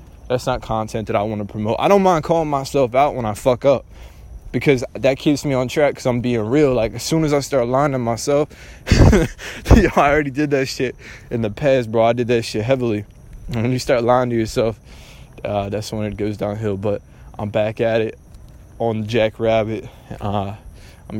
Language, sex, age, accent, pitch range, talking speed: English, male, 20-39, American, 105-125 Hz, 200 wpm